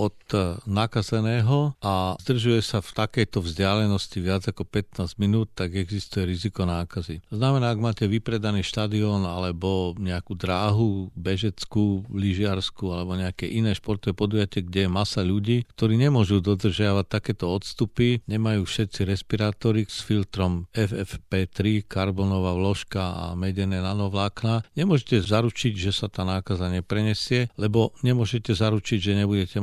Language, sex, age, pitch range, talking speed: Slovak, male, 50-69, 95-110 Hz, 130 wpm